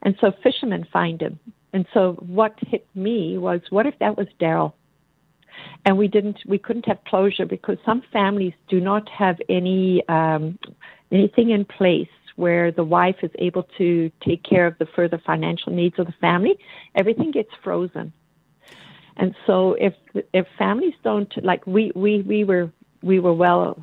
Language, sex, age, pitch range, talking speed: English, female, 50-69, 170-200 Hz, 170 wpm